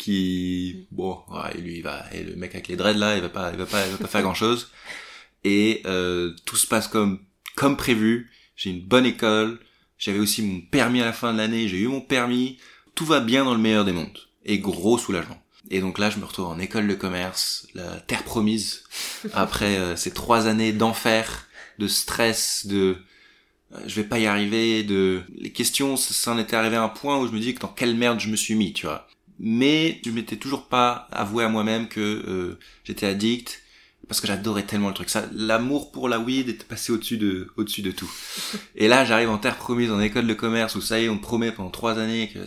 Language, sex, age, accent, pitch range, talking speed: French, male, 20-39, French, 95-115 Hz, 235 wpm